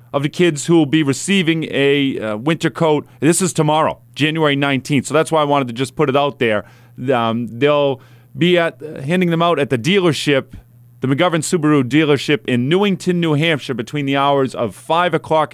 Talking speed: 200 wpm